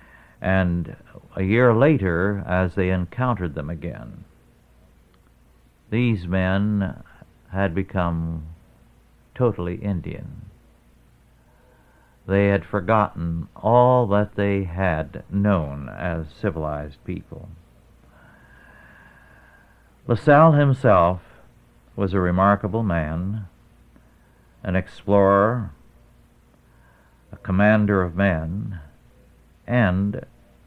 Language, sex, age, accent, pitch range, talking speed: English, male, 60-79, American, 80-105 Hz, 80 wpm